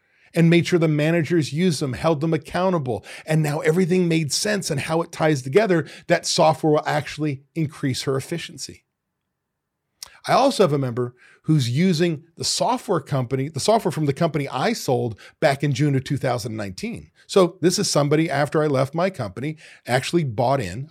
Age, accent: 40-59, American